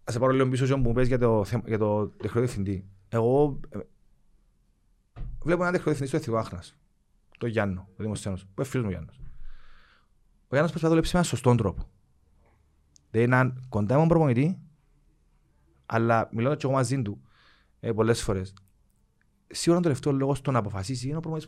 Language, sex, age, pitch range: Greek, male, 30-49, 105-140 Hz